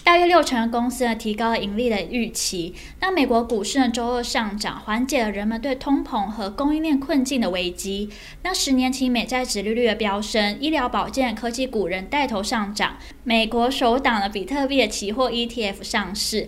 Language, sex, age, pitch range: Chinese, female, 10-29, 210-265 Hz